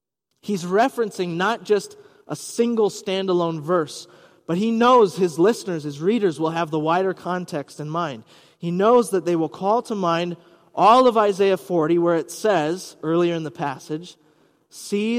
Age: 30-49